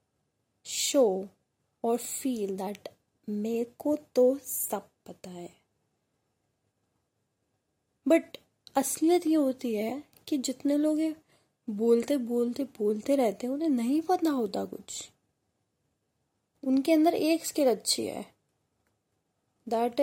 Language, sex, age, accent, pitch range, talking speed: Hindi, female, 20-39, native, 220-295 Hz, 70 wpm